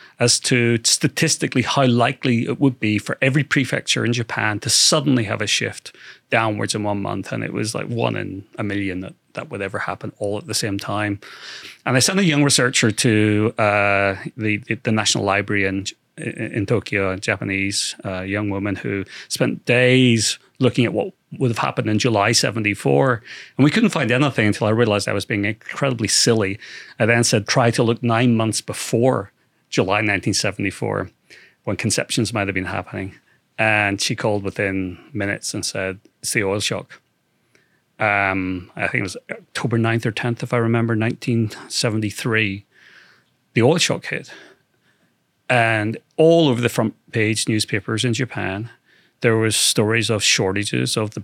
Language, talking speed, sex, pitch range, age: English, 170 wpm, male, 100-120 Hz, 30-49